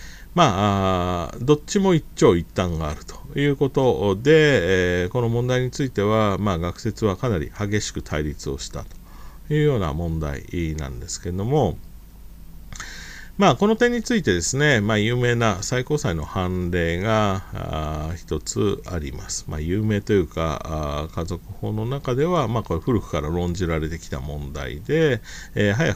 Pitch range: 85-135 Hz